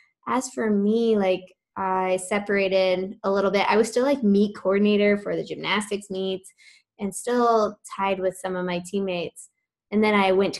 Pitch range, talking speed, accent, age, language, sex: 185-225 Hz, 175 wpm, American, 10-29, English, female